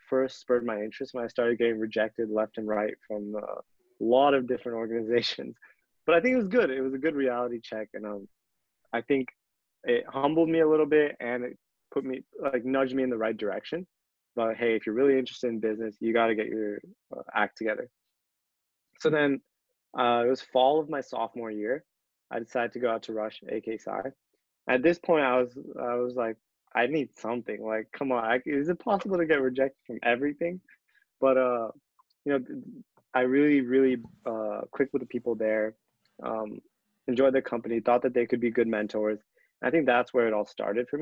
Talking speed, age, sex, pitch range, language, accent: 200 wpm, 20-39, male, 110-135 Hz, English, American